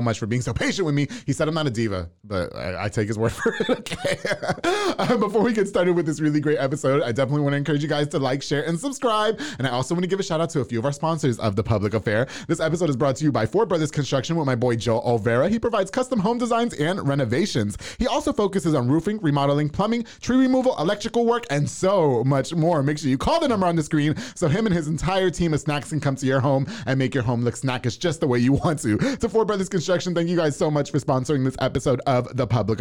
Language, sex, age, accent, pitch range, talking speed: English, male, 30-49, American, 125-175 Hz, 275 wpm